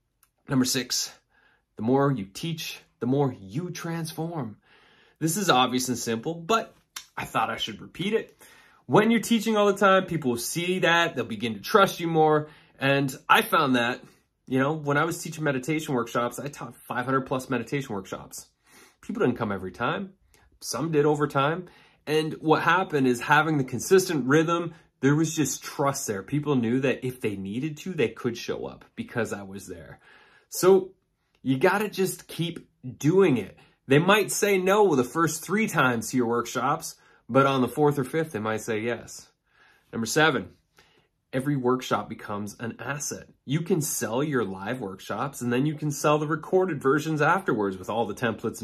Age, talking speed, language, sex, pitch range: 30-49, 185 wpm, English, male, 125-165 Hz